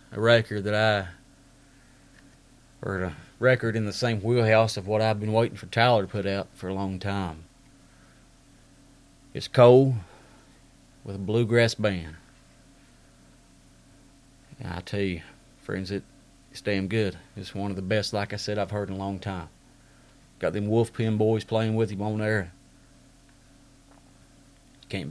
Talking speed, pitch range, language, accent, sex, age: 155 wpm, 100-130 Hz, English, American, male, 40-59